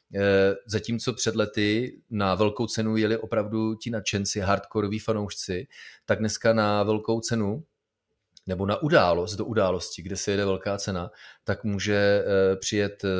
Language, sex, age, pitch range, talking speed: Czech, male, 30-49, 100-115 Hz, 135 wpm